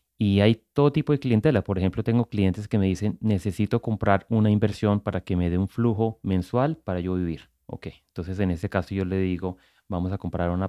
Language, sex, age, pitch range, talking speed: English, male, 30-49, 90-110 Hz, 220 wpm